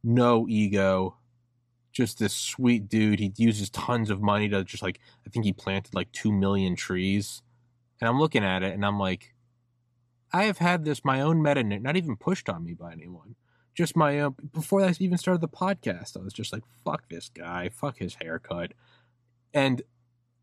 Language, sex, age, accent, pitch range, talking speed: English, male, 20-39, American, 105-120 Hz, 190 wpm